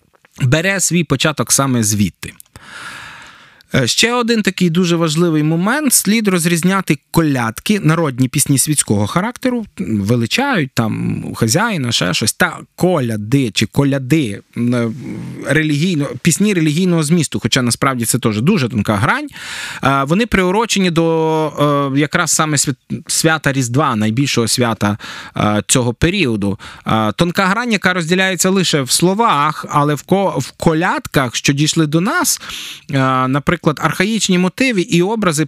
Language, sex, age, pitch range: Ukrainian, male, 20-39, 125-180 Hz